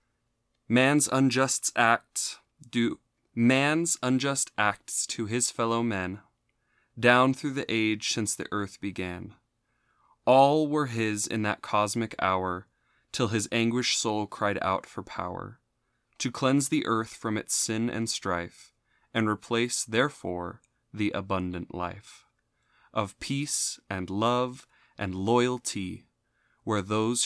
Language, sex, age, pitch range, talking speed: English, male, 20-39, 100-125 Hz, 125 wpm